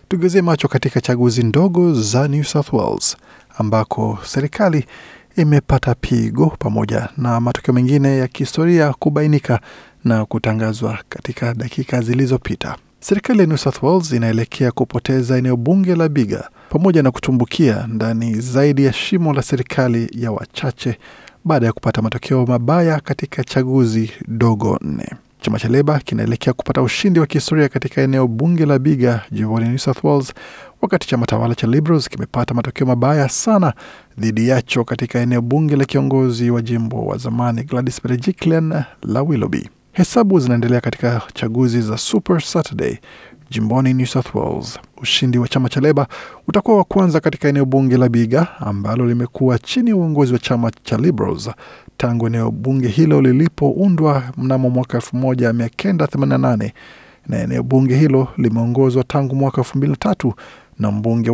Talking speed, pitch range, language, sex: 150 wpm, 120-150 Hz, Swahili, male